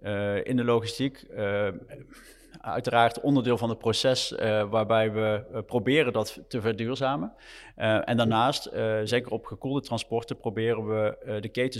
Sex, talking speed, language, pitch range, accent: male, 160 wpm, Dutch, 105-120 Hz, Dutch